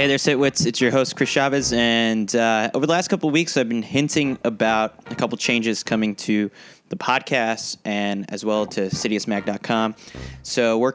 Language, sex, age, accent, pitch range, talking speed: English, male, 20-39, American, 110-130 Hz, 185 wpm